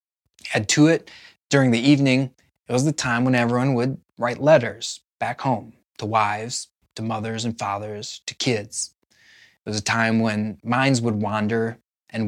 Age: 20-39